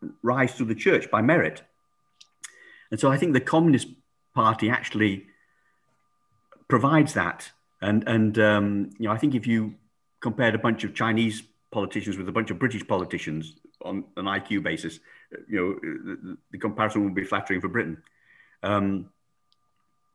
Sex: male